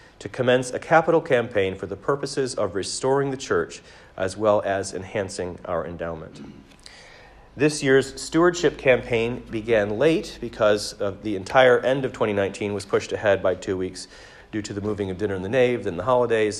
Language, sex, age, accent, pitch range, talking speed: English, male, 40-59, American, 105-135 Hz, 175 wpm